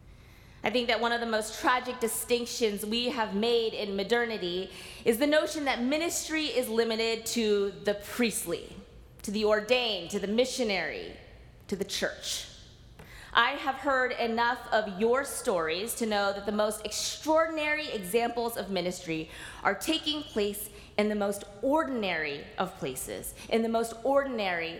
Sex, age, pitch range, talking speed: female, 20-39, 190-250 Hz, 150 wpm